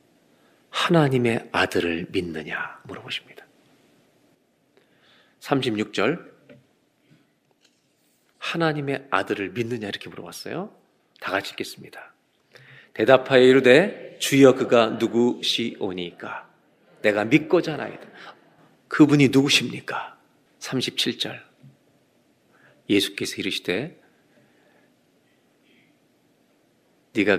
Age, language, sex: 40-59, Korean, male